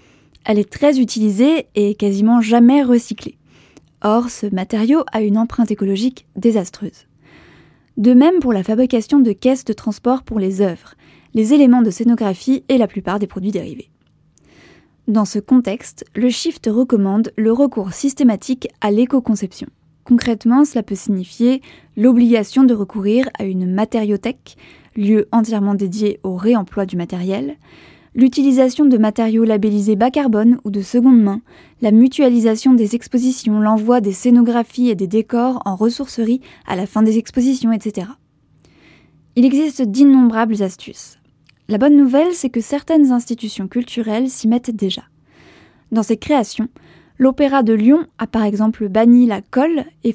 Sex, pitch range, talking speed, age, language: female, 210-255 Hz, 145 wpm, 20-39, French